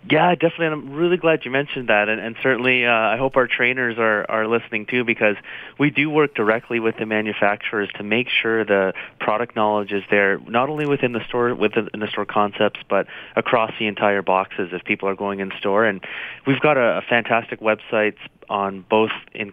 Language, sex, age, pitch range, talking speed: English, male, 30-49, 105-120 Hz, 205 wpm